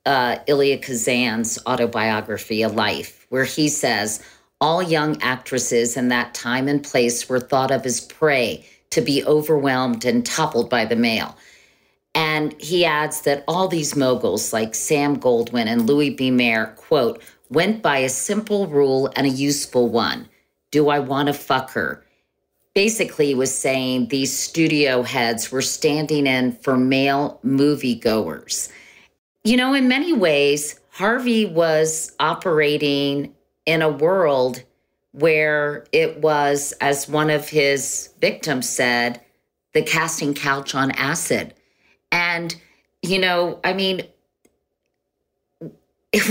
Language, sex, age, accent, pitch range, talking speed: English, female, 40-59, American, 130-160 Hz, 135 wpm